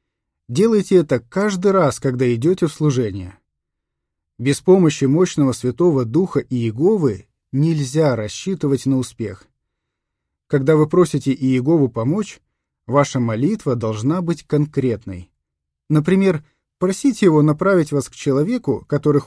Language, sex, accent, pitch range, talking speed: Russian, male, native, 110-160 Hz, 110 wpm